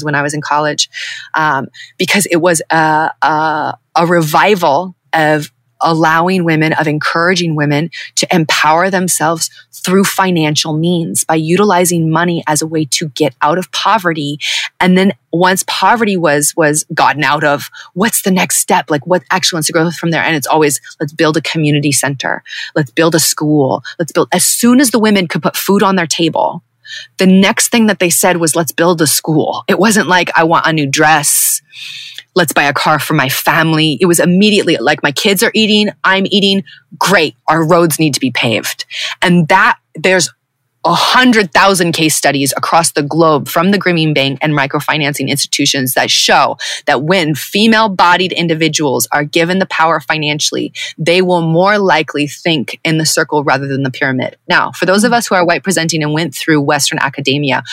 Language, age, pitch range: English, 30-49, 150-180 Hz